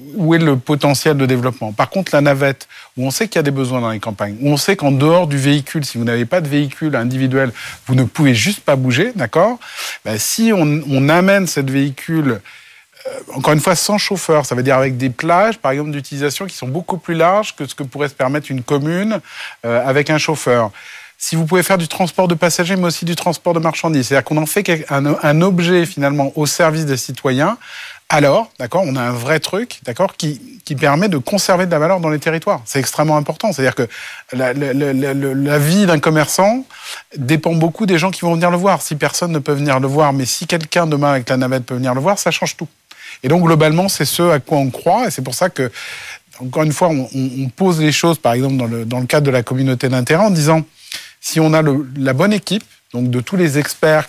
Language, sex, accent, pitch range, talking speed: French, male, French, 135-175 Hz, 240 wpm